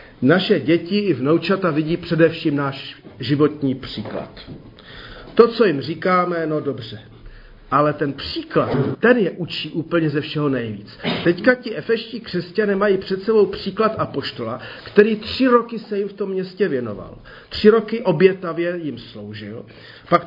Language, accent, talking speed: Czech, native, 145 wpm